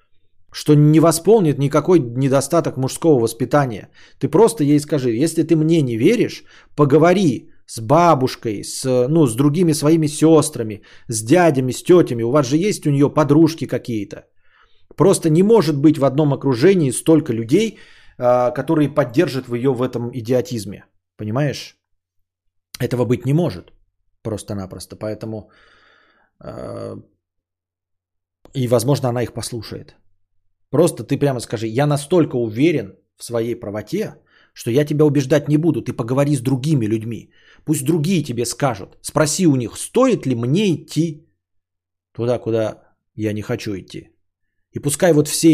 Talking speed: 140 wpm